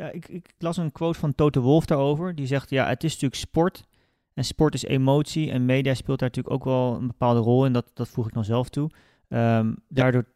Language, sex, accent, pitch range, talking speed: Dutch, male, Dutch, 115-140 Hz, 235 wpm